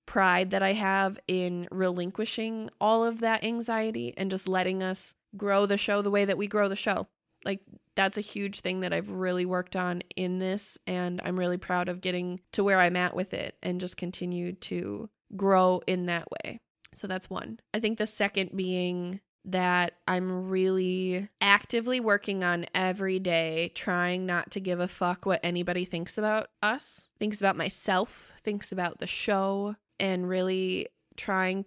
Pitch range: 180-200 Hz